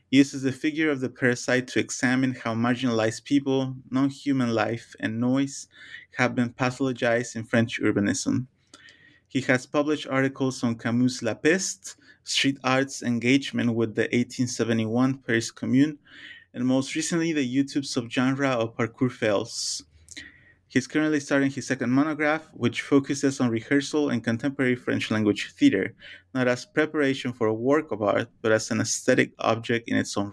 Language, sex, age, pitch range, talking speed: English, male, 30-49, 115-140 Hz, 150 wpm